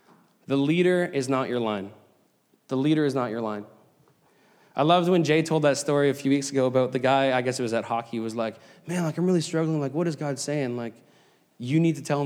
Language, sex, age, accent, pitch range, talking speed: English, male, 20-39, American, 140-205 Hz, 240 wpm